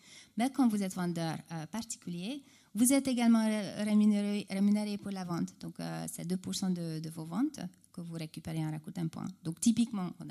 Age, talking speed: 30-49, 185 wpm